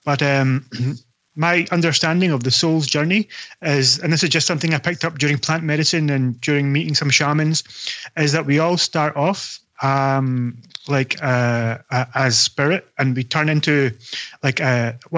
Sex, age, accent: male, 30-49, British